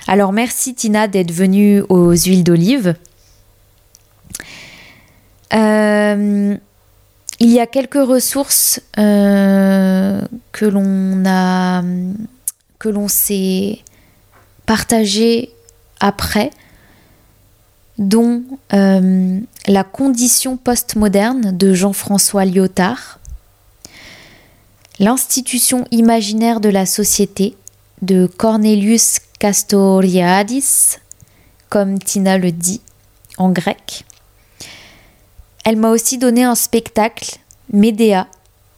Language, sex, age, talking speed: French, female, 20-39, 80 wpm